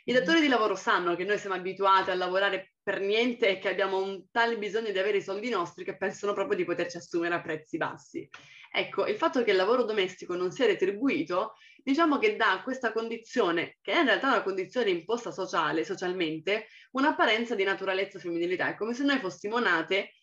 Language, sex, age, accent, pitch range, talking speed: Italian, female, 20-39, native, 185-230 Hz, 200 wpm